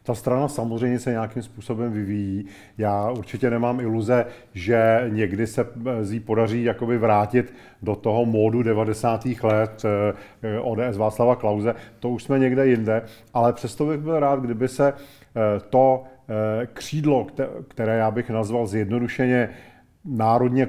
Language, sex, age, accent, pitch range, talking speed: Czech, male, 40-59, native, 115-130 Hz, 135 wpm